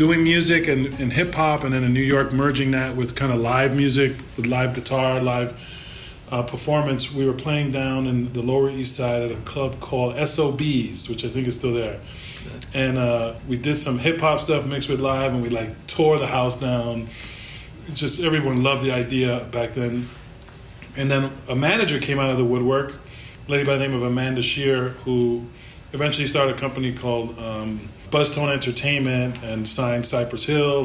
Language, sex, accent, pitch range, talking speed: English, male, American, 120-140 Hz, 190 wpm